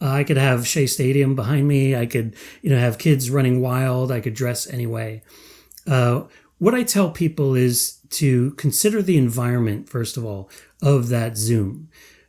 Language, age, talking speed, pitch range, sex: English, 30-49, 170 wpm, 115-145 Hz, male